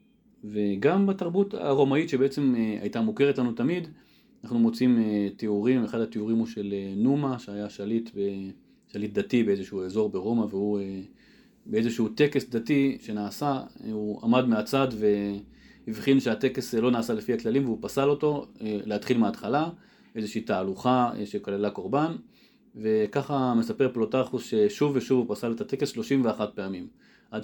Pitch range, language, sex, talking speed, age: 105-140 Hz, Hebrew, male, 125 wpm, 30-49